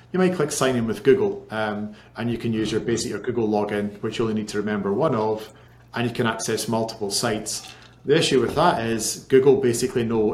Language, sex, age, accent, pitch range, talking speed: English, male, 40-59, British, 110-125 Hz, 225 wpm